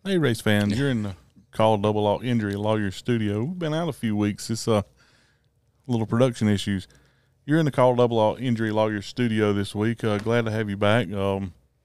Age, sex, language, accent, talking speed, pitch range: 20-39, male, English, American, 210 wpm, 100-115 Hz